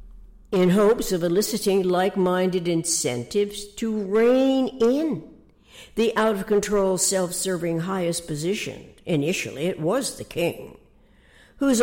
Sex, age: female, 60-79